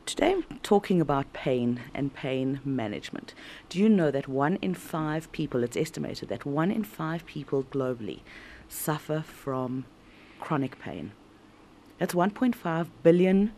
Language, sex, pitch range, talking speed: English, female, 135-170 Hz, 135 wpm